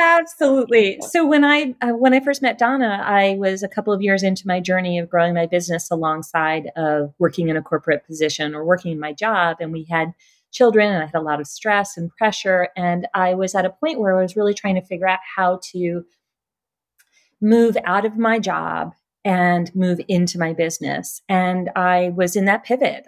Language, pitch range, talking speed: English, 170-220 Hz, 210 wpm